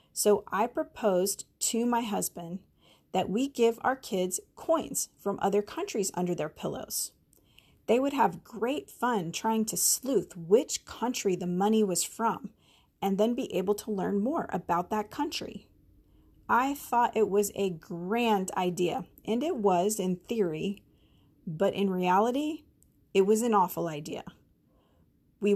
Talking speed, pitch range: 150 wpm, 180-225 Hz